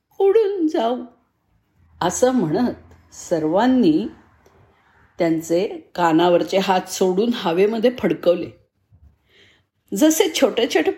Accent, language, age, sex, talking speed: native, Marathi, 50-69, female, 70 wpm